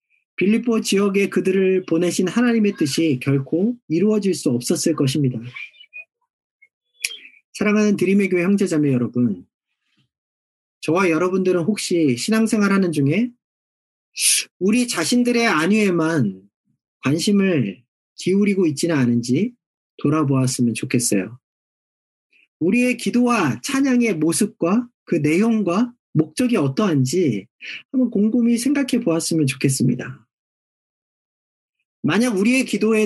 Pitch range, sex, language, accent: 165-245 Hz, male, Korean, native